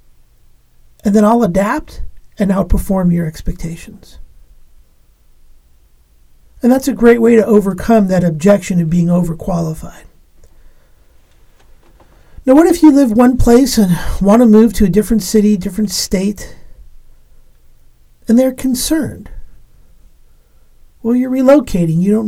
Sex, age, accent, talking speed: male, 50-69, American, 120 wpm